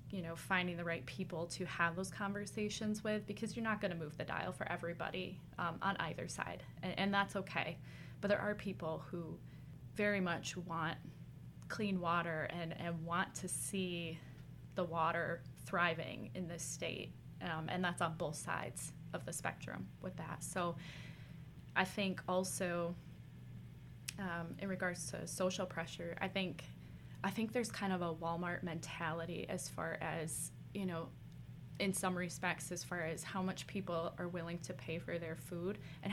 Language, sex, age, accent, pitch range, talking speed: English, female, 20-39, American, 165-195 Hz, 170 wpm